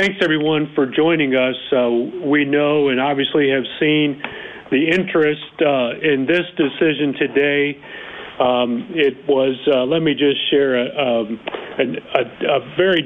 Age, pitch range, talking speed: 40-59, 140-165 Hz, 145 wpm